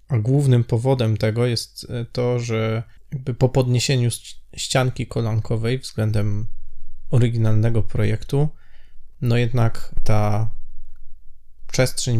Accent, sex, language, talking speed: native, male, Polish, 95 wpm